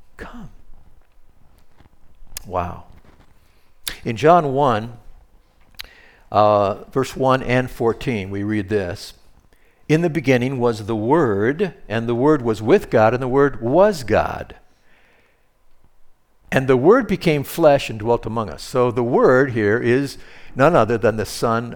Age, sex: 60-79, male